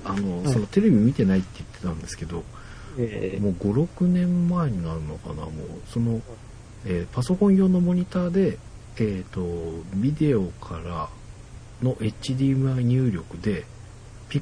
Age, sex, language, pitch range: 60-79, male, Japanese, 95-130 Hz